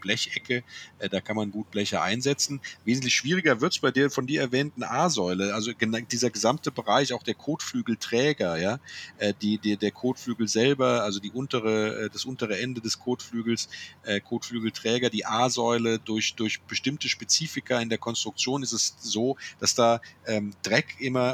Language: German